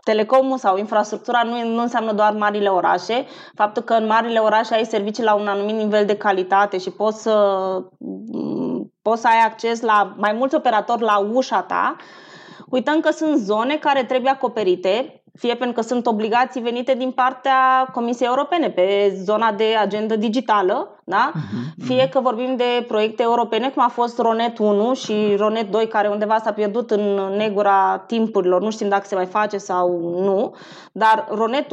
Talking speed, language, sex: 165 wpm, Romanian, female